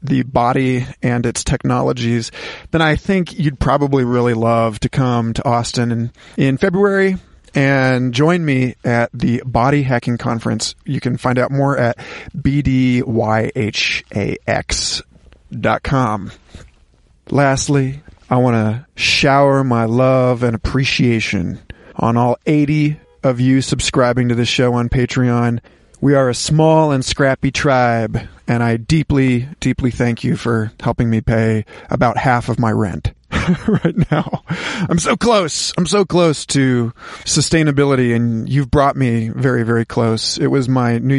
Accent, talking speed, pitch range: American, 140 wpm, 120-150 Hz